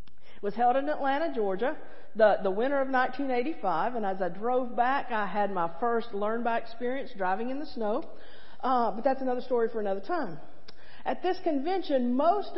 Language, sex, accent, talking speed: English, female, American, 175 wpm